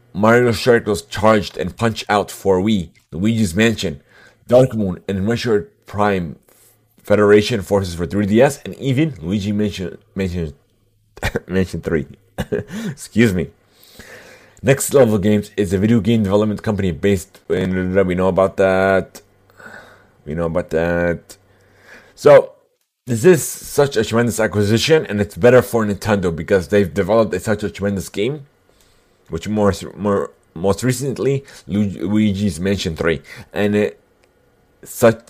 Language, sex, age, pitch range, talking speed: English, male, 30-49, 95-115 Hz, 135 wpm